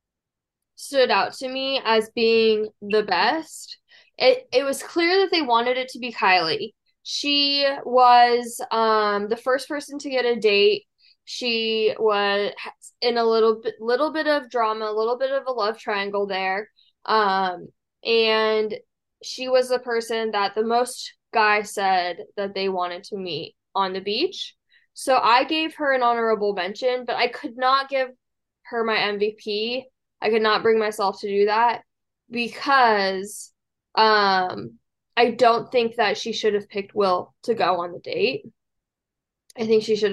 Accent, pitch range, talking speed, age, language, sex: American, 210-255 Hz, 165 wpm, 10-29, English, female